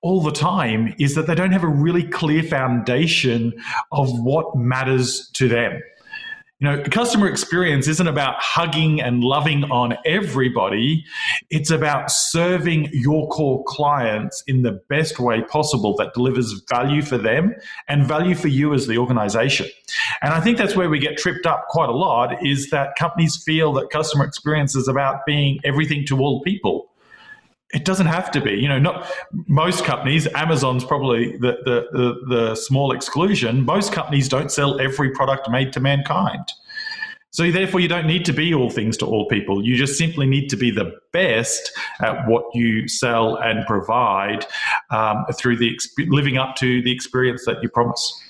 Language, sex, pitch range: English, male, 125-165 Hz